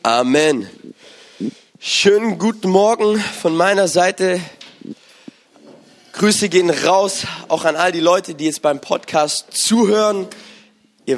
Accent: German